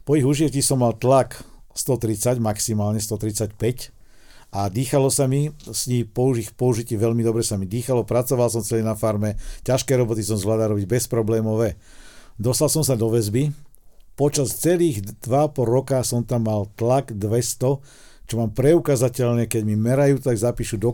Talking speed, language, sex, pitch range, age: 160 wpm, Slovak, male, 110-130 Hz, 50-69